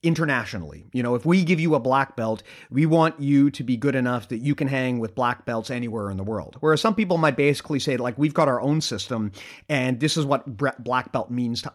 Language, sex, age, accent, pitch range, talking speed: English, male, 30-49, American, 115-145 Hz, 245 wpm